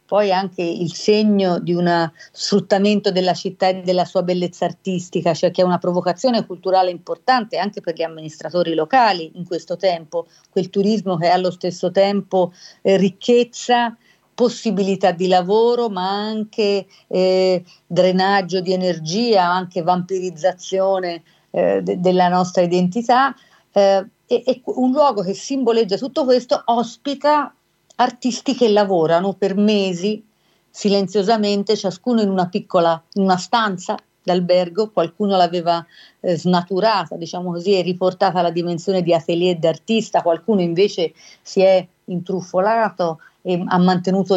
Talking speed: 135 wpm